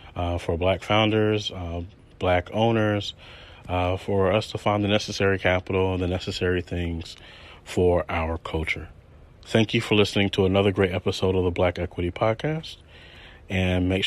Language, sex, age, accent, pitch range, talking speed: English, male, 30-49, American, 90-115 Hz, 160 wpm